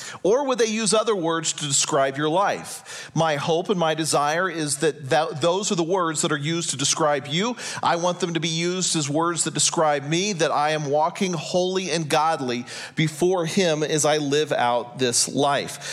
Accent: American